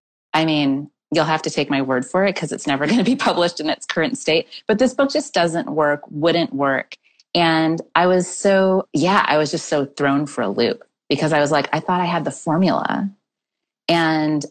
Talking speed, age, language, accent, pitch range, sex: 220 wpm, 30-49, English, American, 140-175 Hz, female